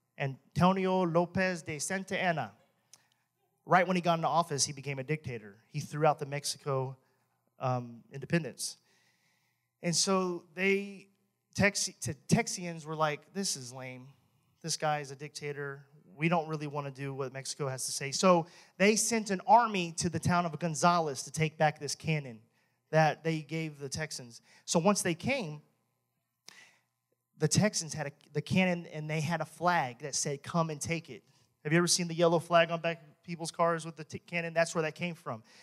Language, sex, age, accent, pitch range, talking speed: English, male, 30-49, American, 140-175 Hz, 180 wpm